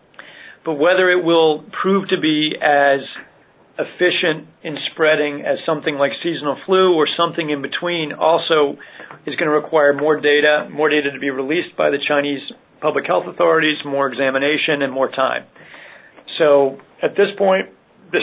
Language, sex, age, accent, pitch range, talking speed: English, male, 40-59, American, 140-160 Hz, 160 wpm